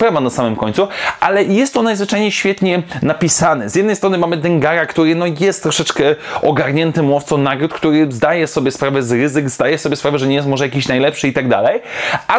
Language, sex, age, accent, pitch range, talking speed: Polish, male, 20-39, native, 140-180 Hz, 200 wpm